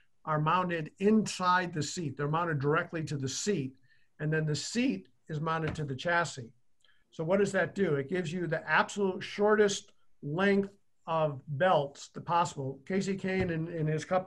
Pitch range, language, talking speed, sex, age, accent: 150-195 Hz, English, 175 wpm, male, 50-69, American